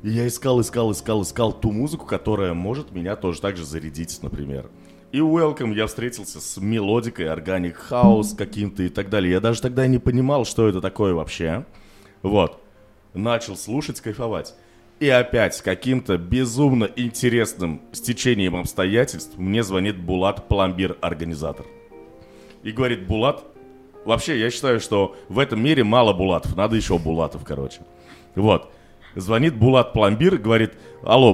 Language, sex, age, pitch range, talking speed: Russian, male, 20-39, 85-115 Hz, 145 wpm